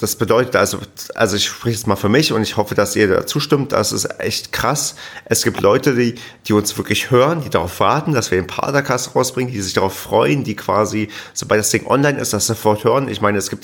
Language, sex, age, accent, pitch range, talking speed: German, male, 30-49, German, 105-125 Hz, 245 wpm